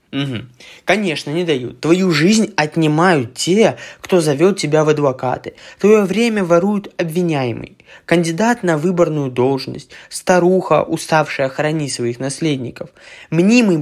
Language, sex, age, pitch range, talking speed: Russian, male, 20-39, 135-185 Hz, 115 wpm